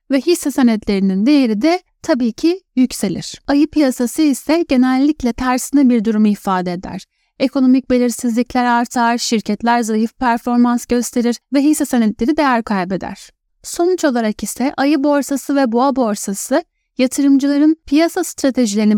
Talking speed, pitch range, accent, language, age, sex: 125 wpm, 215-285 Hz, native, Turkish, 10-29, female